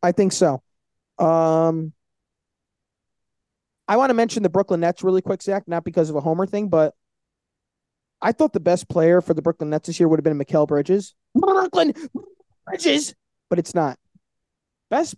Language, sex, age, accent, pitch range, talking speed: English, male, 20-39, American, 160-220 Hz, 170 wpm